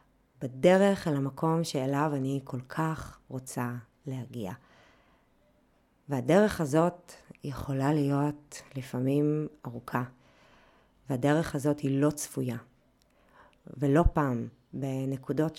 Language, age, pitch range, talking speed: Hebrew, 30-49, 130-150 Hz, 90 wpm